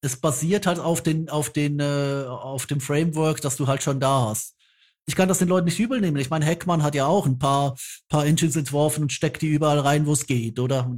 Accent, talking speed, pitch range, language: German, 250 wpm, 140-170 Hz, German